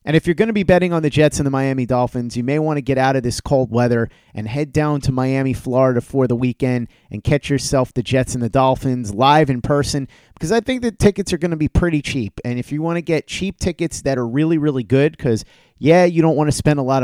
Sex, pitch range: male, 125-170 Hz